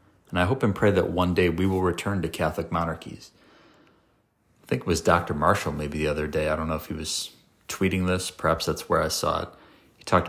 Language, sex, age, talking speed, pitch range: English, male, 40-59, 235 wpm, 80-95 Hz